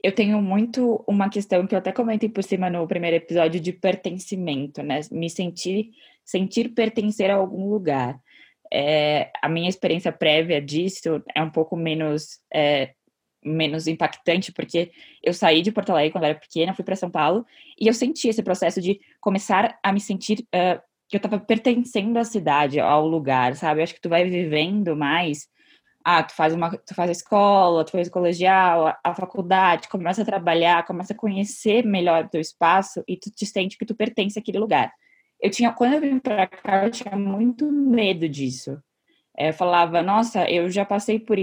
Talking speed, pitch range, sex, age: 185 wpm, 165-210 Hz, female, 10-29